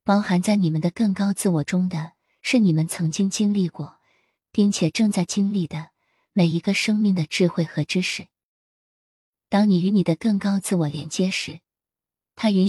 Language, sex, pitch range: Chinese, female, 165-200 Hz